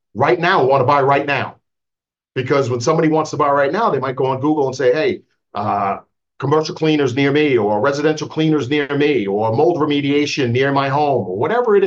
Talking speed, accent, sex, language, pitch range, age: 210 wpm, American, male, English, 130-185 Hz, 50-69